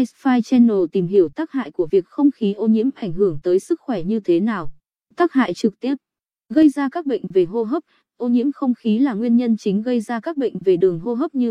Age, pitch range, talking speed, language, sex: 20-39, 200-265 Hz, 250 wpm, Vietnamese, female